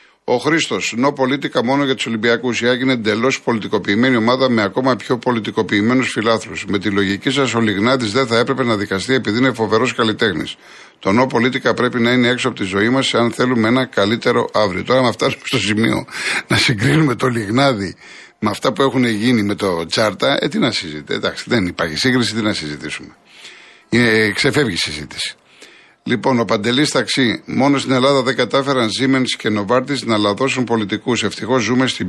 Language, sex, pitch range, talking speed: Greek, male, 110-130 Hz, 185 wpm